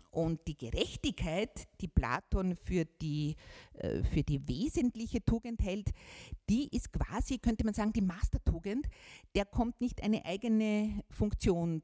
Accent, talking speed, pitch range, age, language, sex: Austrian, 130 wpm, 160-210 Hz, 50-69, German, female